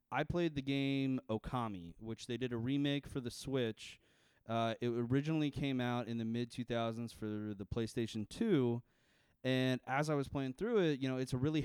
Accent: American